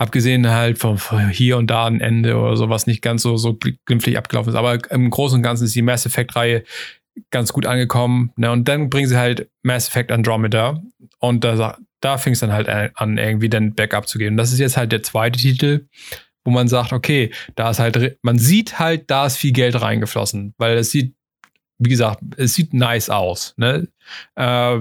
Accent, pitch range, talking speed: German, 115-130 Hz, 200 wpm